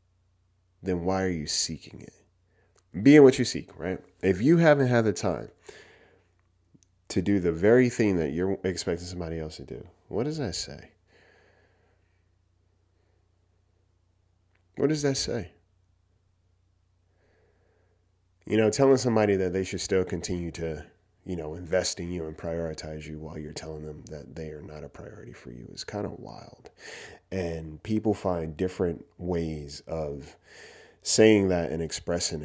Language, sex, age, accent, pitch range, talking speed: English, male, 30-49, American, 85-95 Hz, 150 wpm